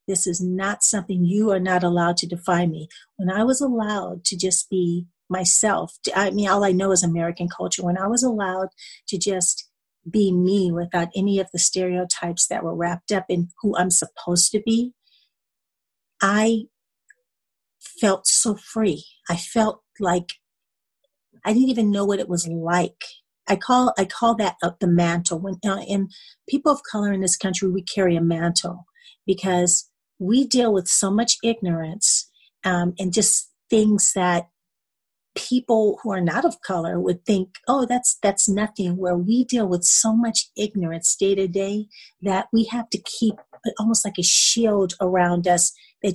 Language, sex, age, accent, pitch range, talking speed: English, female, 40-59, American, 180-220 Hz, 170 wpm